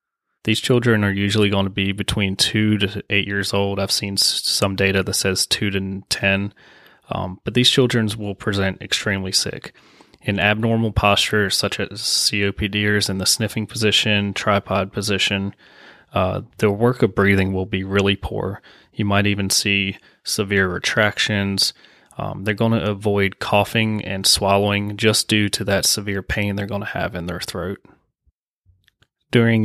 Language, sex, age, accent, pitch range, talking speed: English, male, 20-39, American, 95-105 Hz, 160 wpm